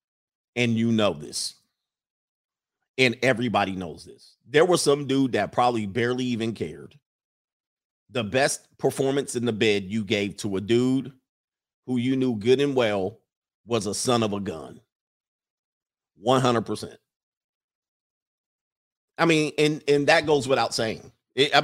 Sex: male